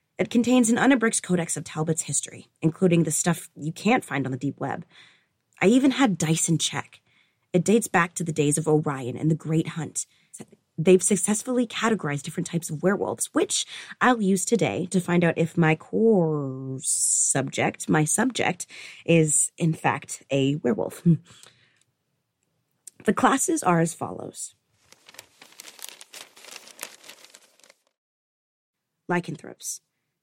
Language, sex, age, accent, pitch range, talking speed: English, female, 20-39, American, 155-195 Hz, 130 wpm